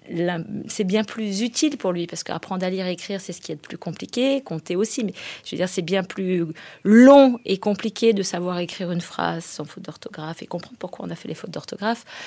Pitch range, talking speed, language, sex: 165-205 Hz, 240 wpm, French, female